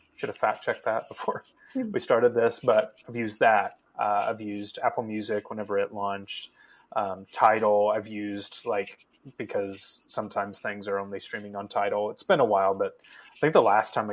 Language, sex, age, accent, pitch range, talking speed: English, male, 20-39, American, 100-120 Hz, 185 wpm